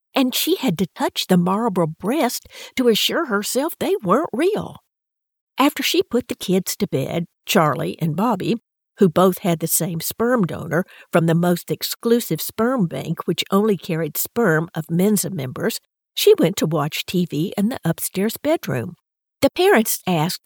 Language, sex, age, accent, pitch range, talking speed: English, female, 50-69, American, 170-250 Hz, 165 wpm